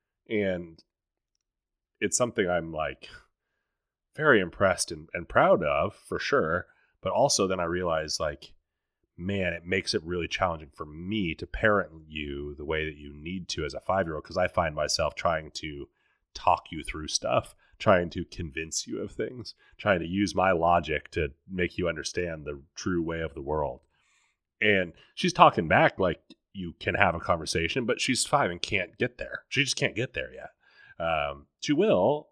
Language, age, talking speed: English, 30-49, 180 wpm